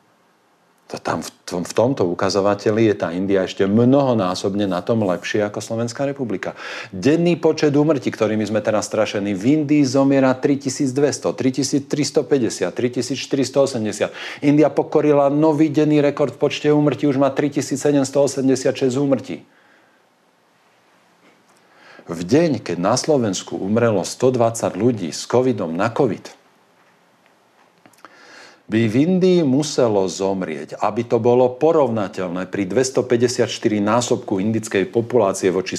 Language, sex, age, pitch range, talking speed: Slovak, male, 50-69, 110-145 Hz, 115 wpm